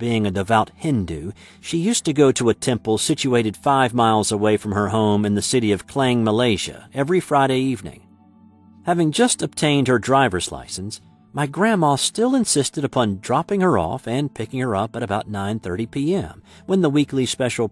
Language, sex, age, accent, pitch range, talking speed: English, male, 50-69, American, 100-145 Hz, 180 wpm